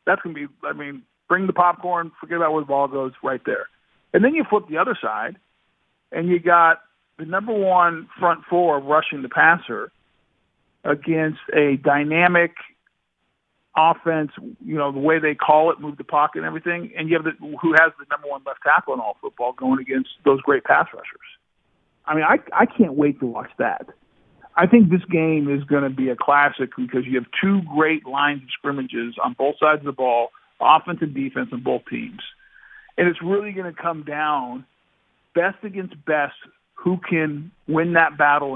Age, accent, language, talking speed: 50-69, American, English, 195 wpm